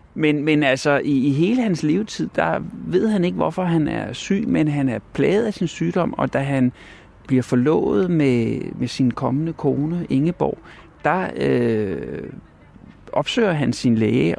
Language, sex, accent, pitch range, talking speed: Danish, male, native, 120-155 Hz, 165 wpm